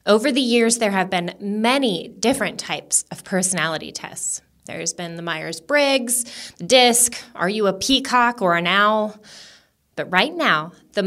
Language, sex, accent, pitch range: English, female, American, 180-245 Hz